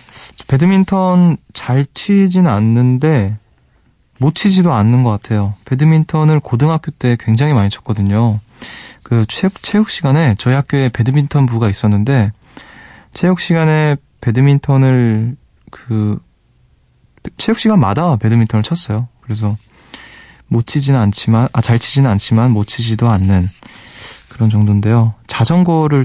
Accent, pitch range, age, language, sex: native, 105-135 Hz, 20-39, Korean, male